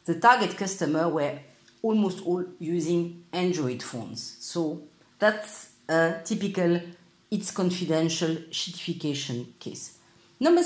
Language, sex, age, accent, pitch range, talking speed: English, female, 50-69, French, 150-205 Hz, 100 wpm